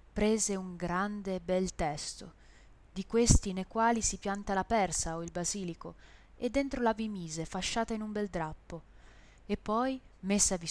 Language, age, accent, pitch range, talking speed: Italian, 20-39, native, 180-225 Hz, 160 wpm